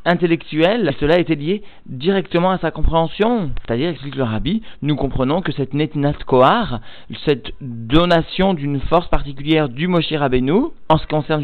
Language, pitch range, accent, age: French, 135-170 Hz, French, 40-59